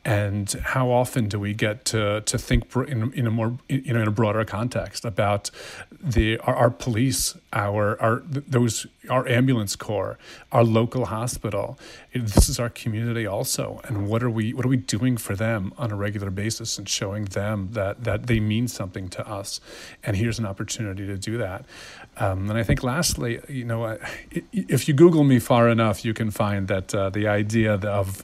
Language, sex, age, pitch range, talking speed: English, male, 40-59, 105-125 Hz, 195 wpm